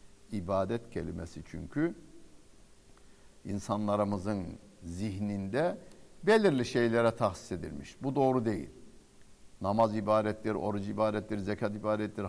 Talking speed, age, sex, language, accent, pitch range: 90 wpm, 60-79, male, Turkish, native, 100-160 Hz